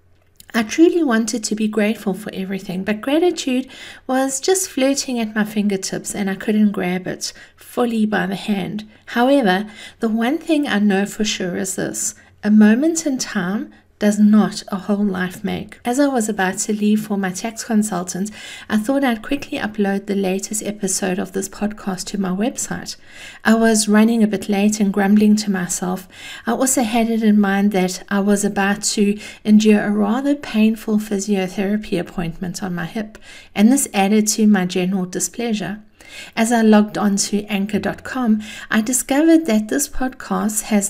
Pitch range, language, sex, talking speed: 195-230 Hz, English, female, 175 wpm